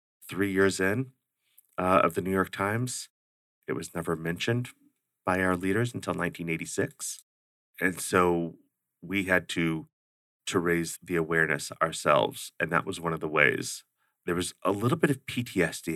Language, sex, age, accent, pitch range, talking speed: English, male, 30-49, American, 80-90 Hz, 160 wpm